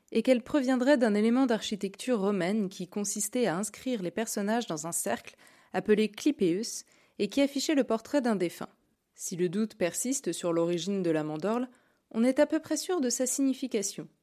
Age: 20-39